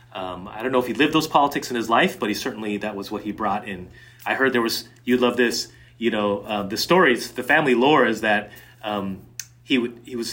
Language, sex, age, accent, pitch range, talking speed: English, male, 30-49, American, 100-125 Hz, 250 wpm